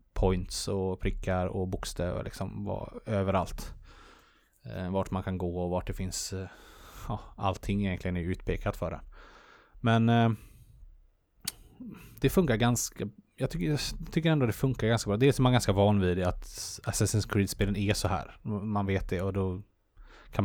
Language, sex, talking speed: English, male, 165 wpm